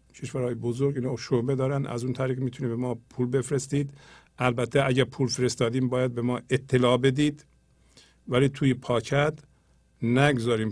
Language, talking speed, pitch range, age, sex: English, 150 wpm, 115-130 Hz, 50-69, male